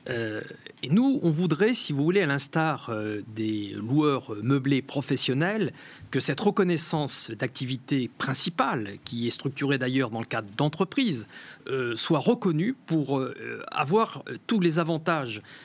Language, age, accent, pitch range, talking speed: French, 40-59, French, 130-195 Hz, 140 wpm